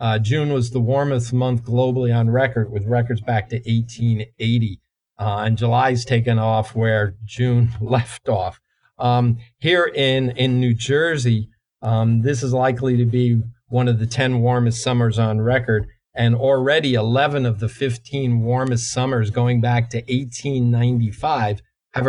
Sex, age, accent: male, 50-69, American